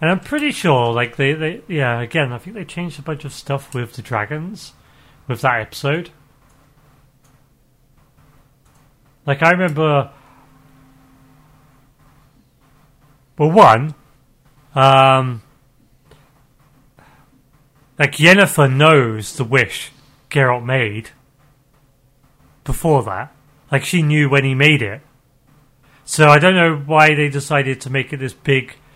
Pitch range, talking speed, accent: 130-150 Hz, 120 wpm, British